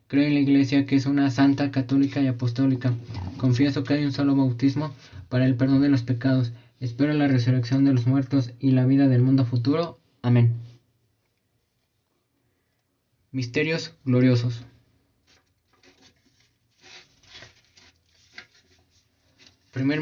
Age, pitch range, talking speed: 20-39, 120-140 Hz, 115 wpm